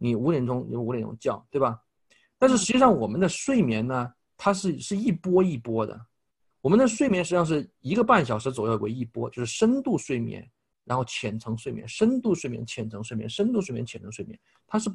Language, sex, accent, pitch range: Chinese, male, native, 115-170 Hz